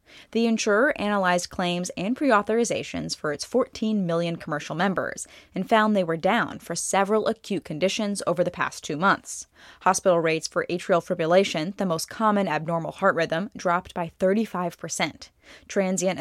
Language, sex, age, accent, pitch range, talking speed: English, female, 10-29, American, 170-210 Hz, 155 wpm